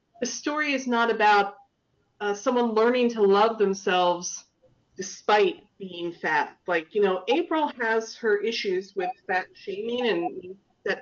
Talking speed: 140 wpm